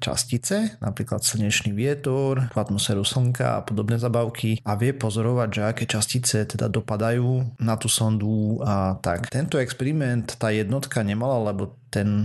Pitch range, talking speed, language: 105-125 Hz, 140 wpm, Slovak